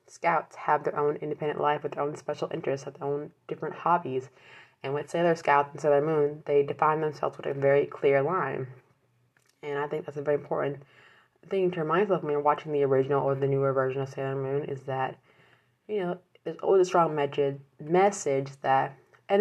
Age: 20-39